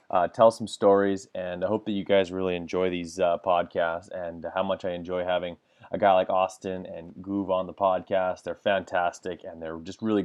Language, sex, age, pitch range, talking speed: English, male, 20-39, 90-105 Hz, 215 wpm